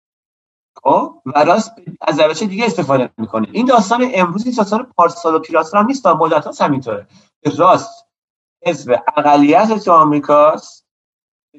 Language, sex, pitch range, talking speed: Persian, male, 145-205 Hz, 125 wpm